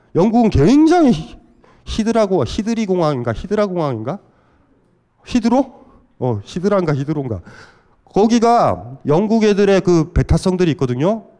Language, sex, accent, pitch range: Korean, male, native, 135-215 Hz